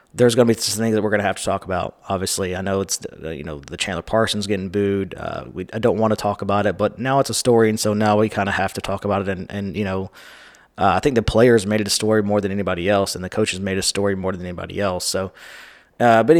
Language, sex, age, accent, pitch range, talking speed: English, male, 20-39, American, 100-110 Hz, 295 wpm